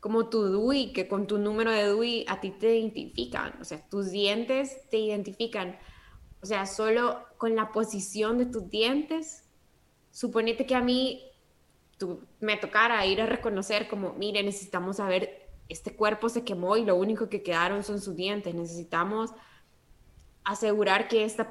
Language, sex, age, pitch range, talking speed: Spanish, female, 10-29, 190-225 Hz, 160 wpm